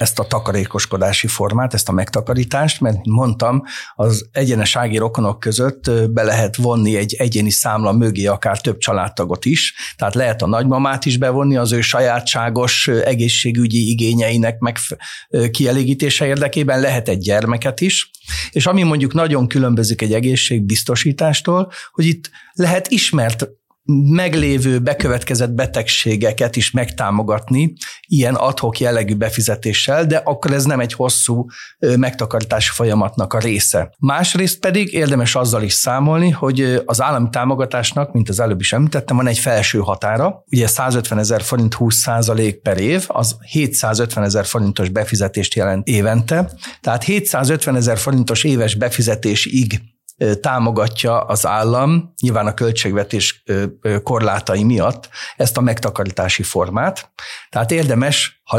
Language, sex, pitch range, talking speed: Hungarian, male, 110-135 Hz, 130 wpm